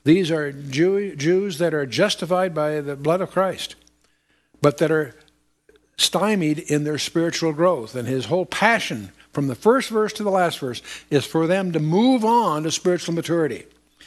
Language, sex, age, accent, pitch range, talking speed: English, male, 60-79, American, 150-190 Hz, 175 wpm